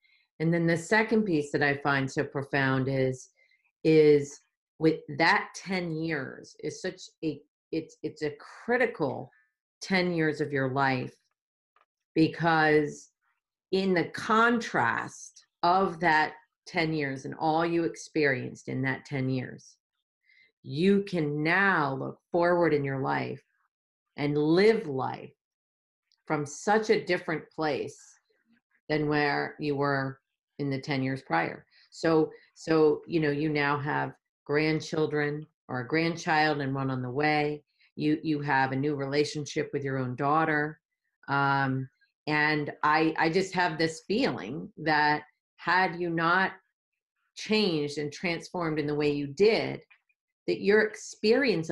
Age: 40-59